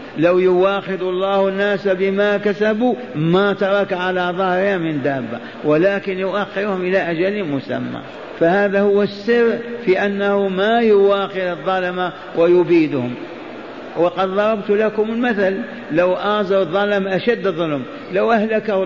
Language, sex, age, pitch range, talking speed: Arabic, male, 50-69, 175-200 Hz, 120 wpm